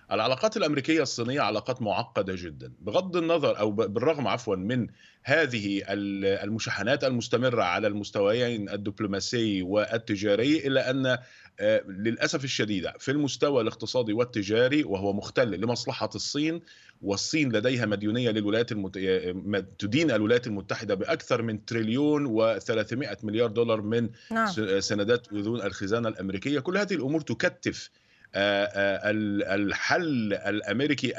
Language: Arabic